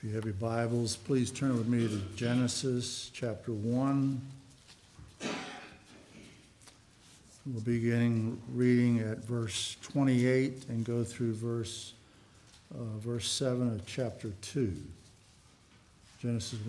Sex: male